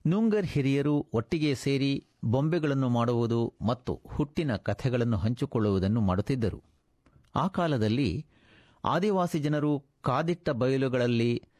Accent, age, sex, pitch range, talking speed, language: native, 50-69, male, 105-140 Hz, 90 wpm, Kannada